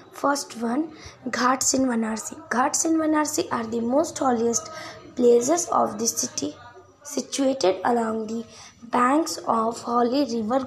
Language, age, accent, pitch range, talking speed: Hindi, 20-39, native, 240-300 Hz, 130 wpm